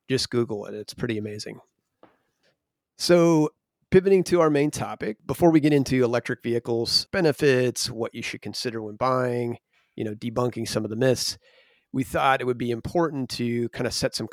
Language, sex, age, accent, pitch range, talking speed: English, male, 30-49, American, 110-135 Hz, 180 wpm